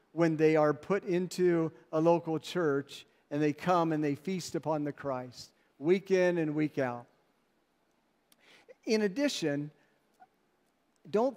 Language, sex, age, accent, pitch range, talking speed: English, male, 50-69, American, 155-210 Hz, 130 wpm